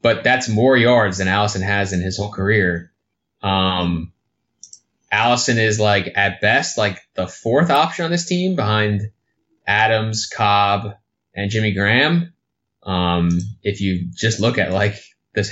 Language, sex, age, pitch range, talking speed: English, male, 20-39, 100-115 Hz, 145 wpm